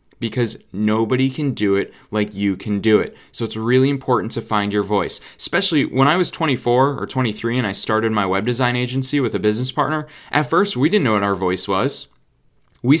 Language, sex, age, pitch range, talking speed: English, male, 20-39, 105-130 Hz, 210 wpm